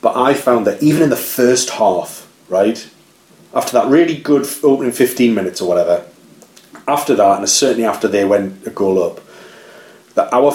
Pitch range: 95-130 Hz